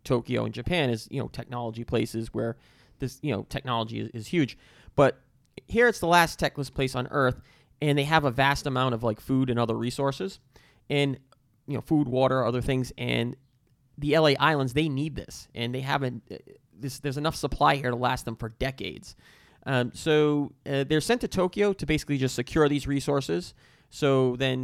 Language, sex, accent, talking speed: English, male, American, 190 wpm